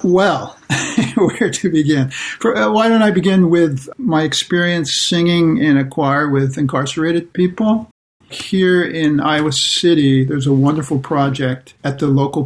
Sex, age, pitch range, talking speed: male, 60-79, 135-155 Hz, 145 wpm